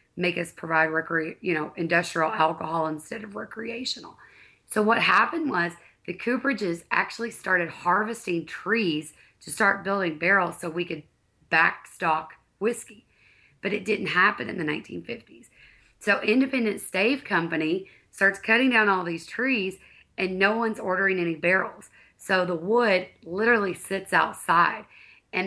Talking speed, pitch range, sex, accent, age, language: 140 wpm, 170-210 Hz, female, American, 30-49, English